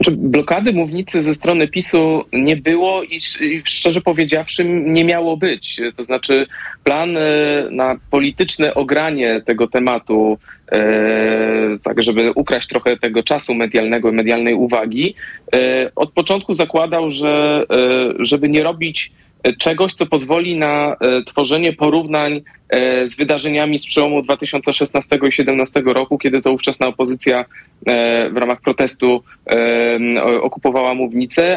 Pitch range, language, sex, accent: 125-150 Hz, Polish, male, native